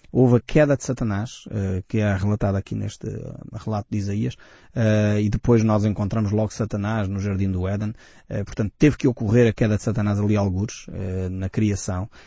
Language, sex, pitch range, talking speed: Portuguese, male, 105-130 Hz, 175 wpm